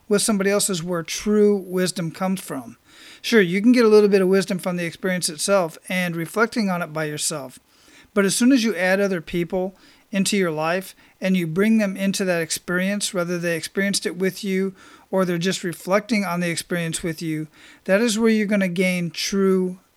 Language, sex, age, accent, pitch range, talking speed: English, male, 40-59, American, 180-210 Hz, 210 wpm